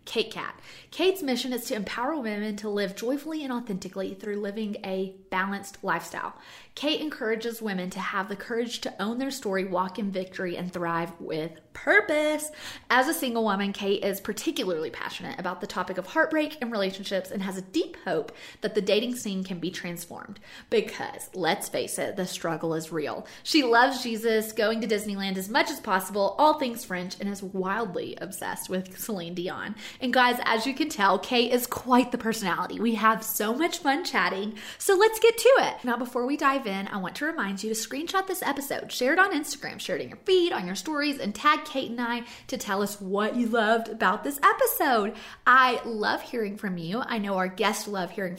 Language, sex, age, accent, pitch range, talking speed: English, female, 30-49, American, 190-255 Hz, 205 wpm